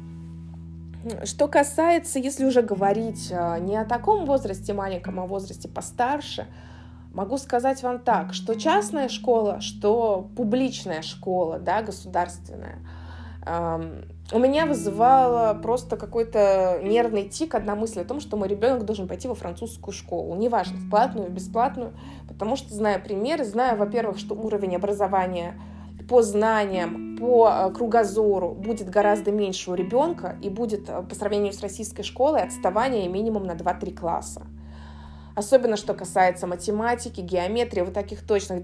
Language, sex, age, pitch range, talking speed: Russian, female, 20-39, 180-240 Hz, 135 wpm